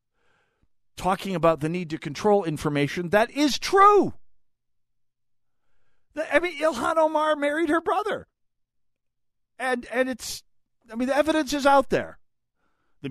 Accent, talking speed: American, 130 wpm